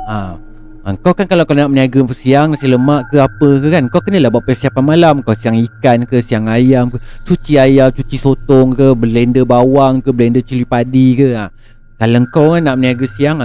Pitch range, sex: 120-180 Hz, male